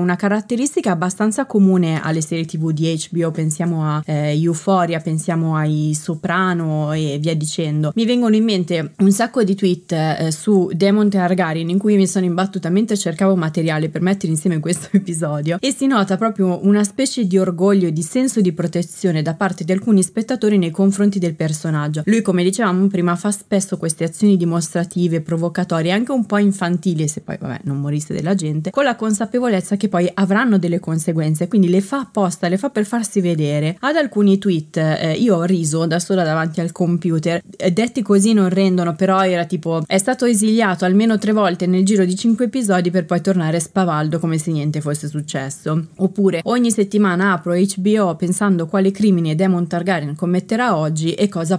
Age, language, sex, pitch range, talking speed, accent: 20-39, Italian, female, 165-200 Hz, 185 wpm, native